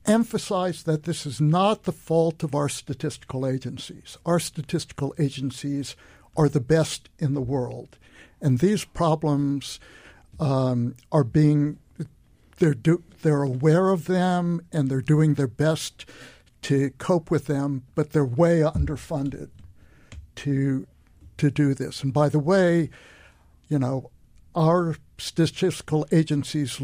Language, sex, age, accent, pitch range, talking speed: English, male, 60-79, American, 130-160 Hz, 130 wpm